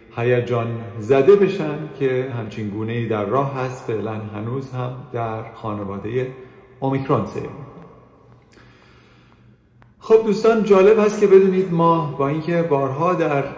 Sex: male